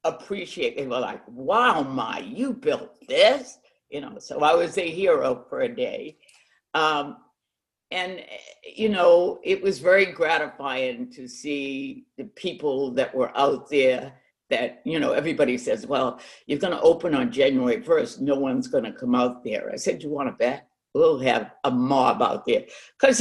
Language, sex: English, female